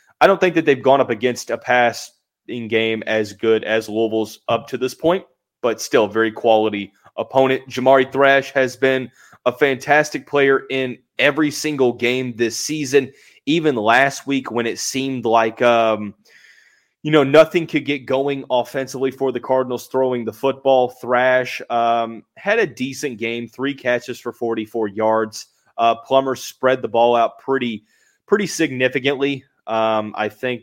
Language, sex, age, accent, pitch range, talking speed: English, male, 20-39, American, 110-125 Hz, 160 wpm